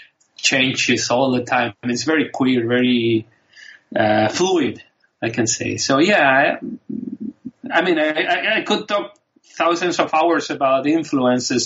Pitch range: 125-180 Hz